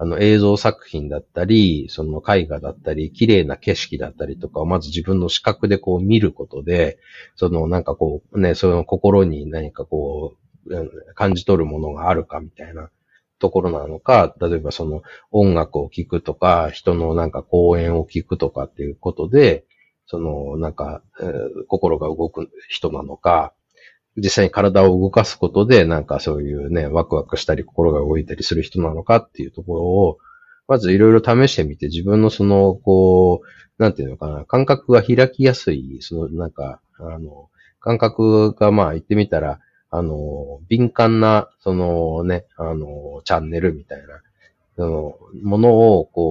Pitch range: 80-105 Hz